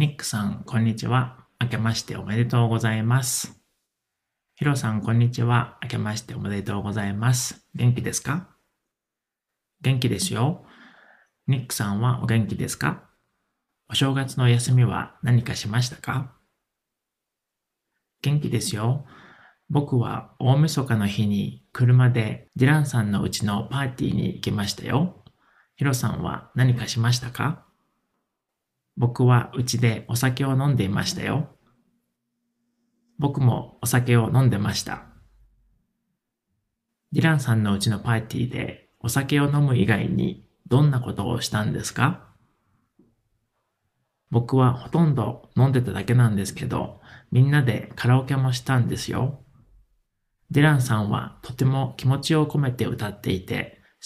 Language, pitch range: Japanese, 115-135 Hz